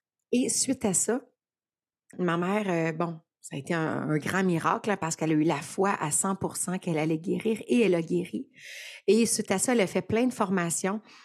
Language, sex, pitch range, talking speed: French, female, 170-210 Hz, 210 wpm